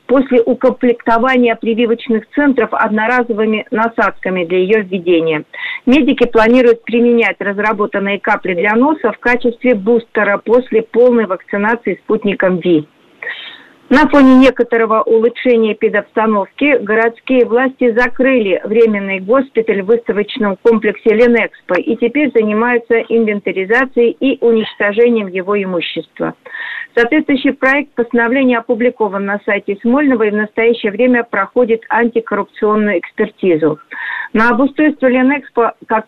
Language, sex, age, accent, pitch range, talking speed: Russian, female, 50-69, native, 210-245 Hz, 105 wpm